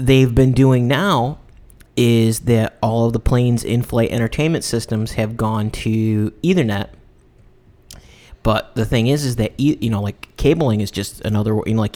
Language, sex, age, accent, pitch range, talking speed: English, male, 30-49, American, 115-135 Hz, 170 wpm